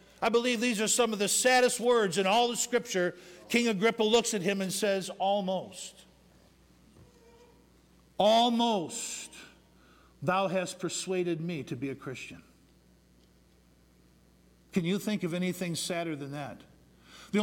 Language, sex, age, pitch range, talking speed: English, male, 50-69, 145-205 Hz, 135 wpm